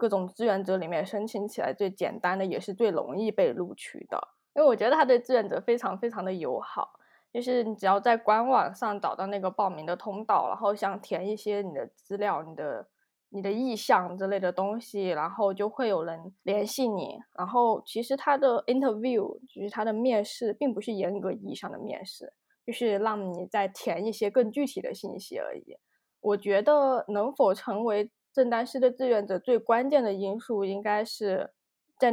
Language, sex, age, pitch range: Chinese, female, 20-39, 195-240 Hz